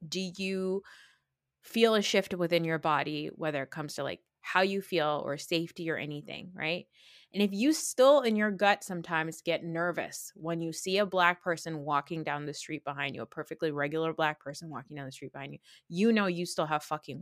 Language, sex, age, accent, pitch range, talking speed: English, female, 20-39, American, 155-195 Hz, 210 wpm